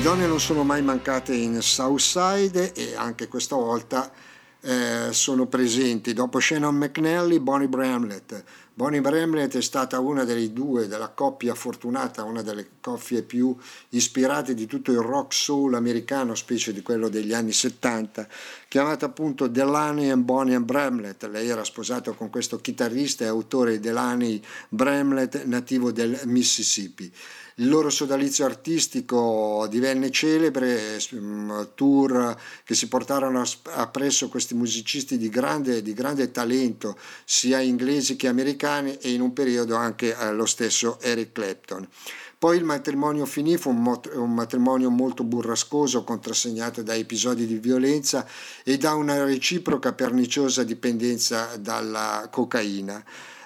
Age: 50-69